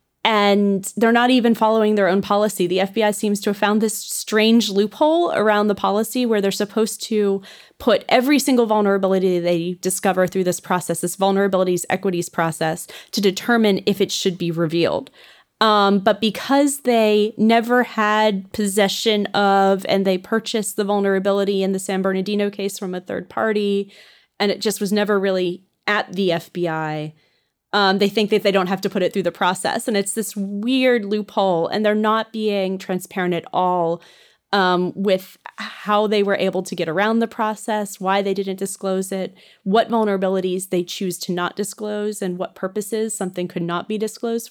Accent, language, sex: American, English, female